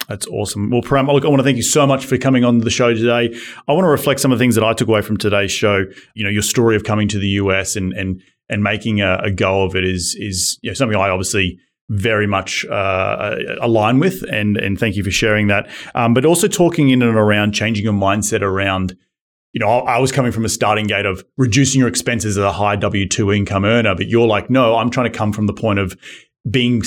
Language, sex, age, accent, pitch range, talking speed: English, male, 30-49, Australian, 105-125 Hz, 255 wpm